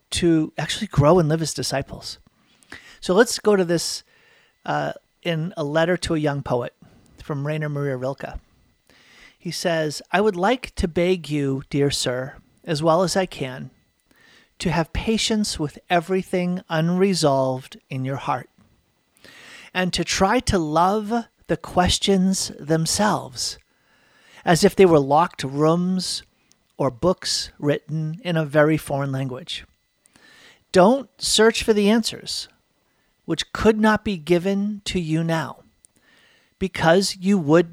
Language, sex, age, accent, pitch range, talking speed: English, male, 40-59, American, 150-190 Hz, 135 wpm